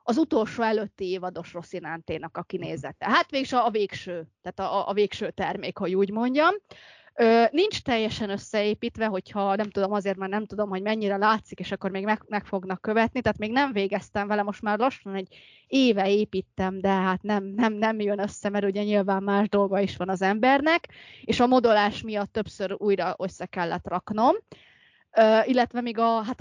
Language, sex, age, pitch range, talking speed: Hungarian, female, 20-39, 190-230 Hz, 180 wpm